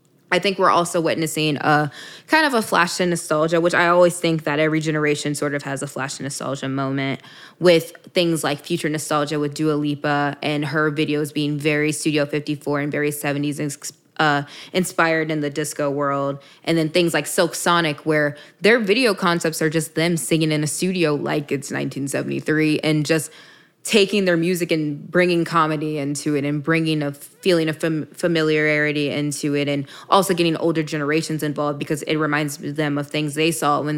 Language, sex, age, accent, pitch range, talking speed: English, female, 20-39, American, 145-165 Hz, 185 wpm